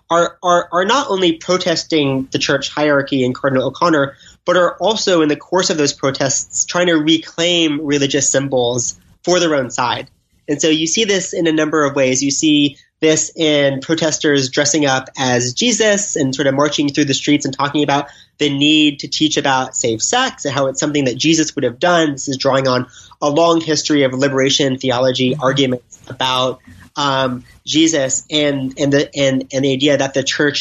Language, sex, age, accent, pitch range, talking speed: English, male, 30-49, American, 135-160 Hz, 190 wpm